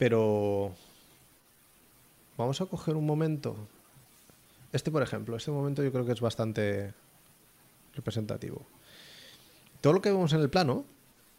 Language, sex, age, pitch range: Spanish, male, 30-49, 110-135 Hz